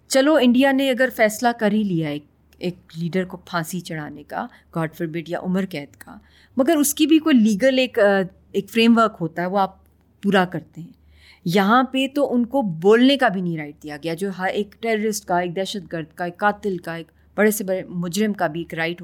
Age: 30-49